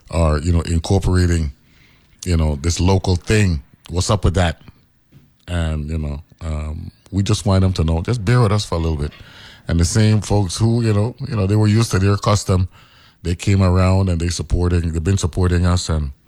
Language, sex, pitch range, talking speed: English, male, 80-95 Hz, 210 wpm